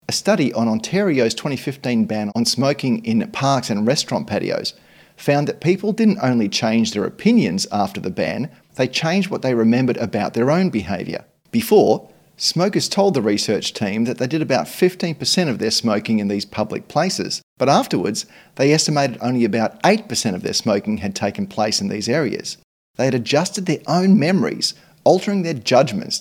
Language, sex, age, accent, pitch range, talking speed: English, male, 40-59, Australian, 115-175 Hz, 175 wpm